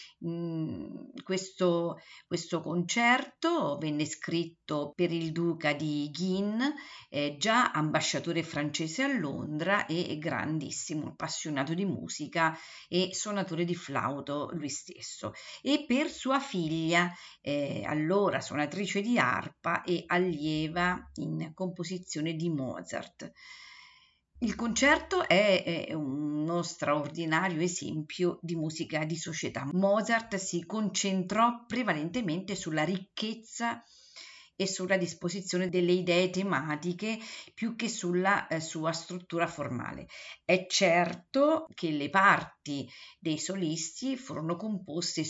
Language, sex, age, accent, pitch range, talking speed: Italian, female, 50-69, native, 155-195 Hz, 105 wpm